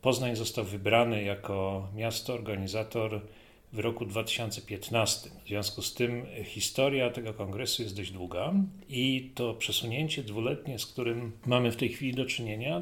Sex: male